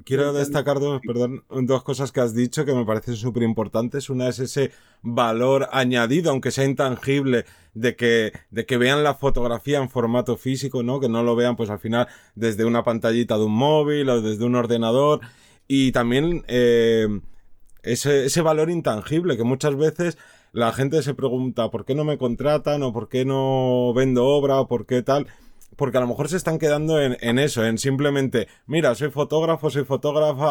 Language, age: Spanish, 30-49